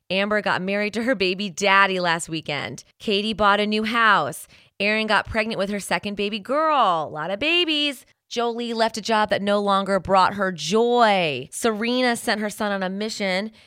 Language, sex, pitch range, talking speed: English, female, 180-220 Hz, 190 wpm